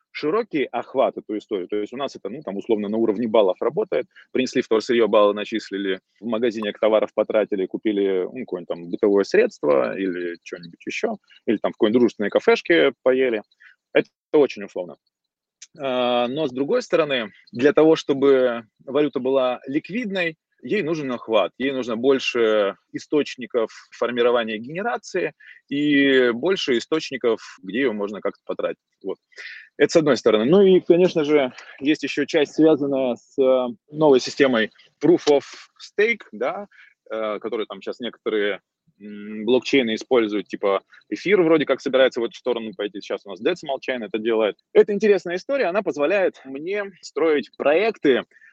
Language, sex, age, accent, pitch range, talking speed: Russian, male, 20-39, native, 110-165 Hz, 150 wpm